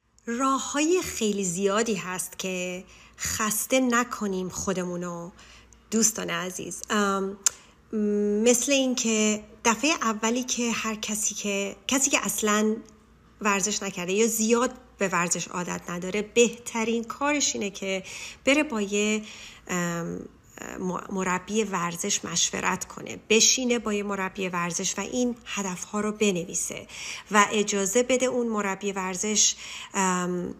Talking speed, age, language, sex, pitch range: 110 wpm, 30-49, Persian, female, 190-225 Hz